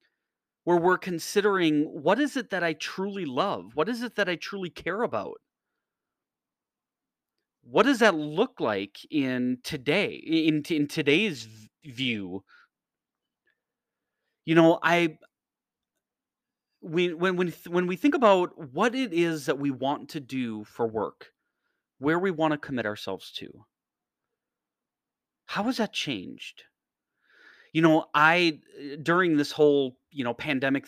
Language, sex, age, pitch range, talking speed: English, male, 30-49, 135-185 Hz, 130 wpm